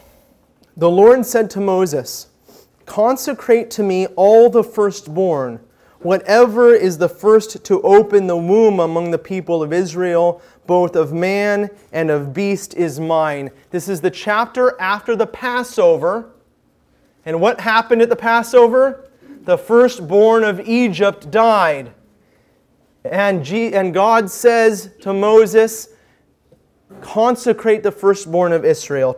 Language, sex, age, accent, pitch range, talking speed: English, male, 30-49, American, 175-230 Hz, 125 wpm